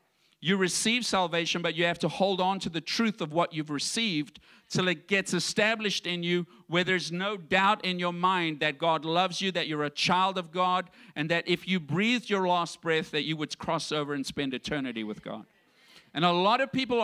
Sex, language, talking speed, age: male, English, 220 wpm, 50-69